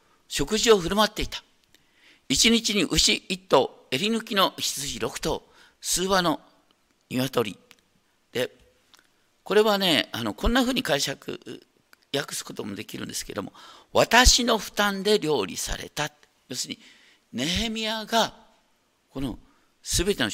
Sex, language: male, Japanese